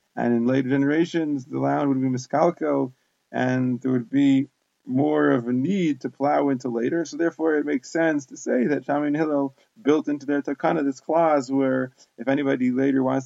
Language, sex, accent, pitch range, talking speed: English, male, American, 125-150 Hz, 195 wpm